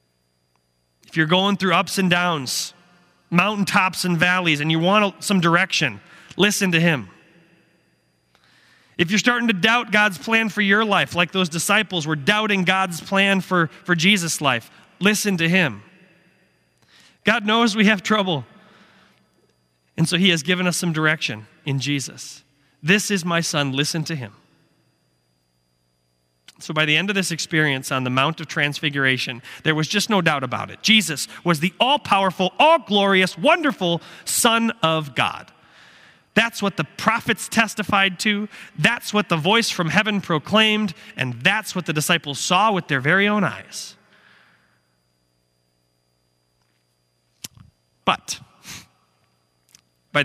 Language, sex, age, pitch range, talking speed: English, male, 30-49, 130-195 Hz, 140 wpm